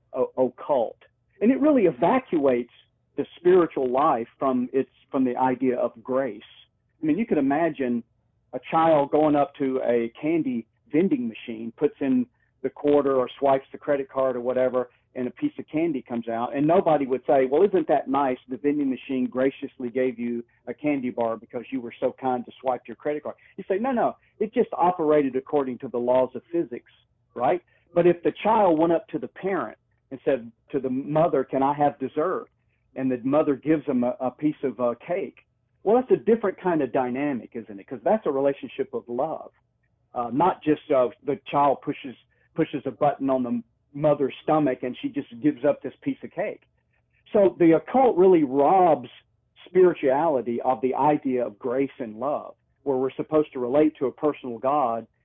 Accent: American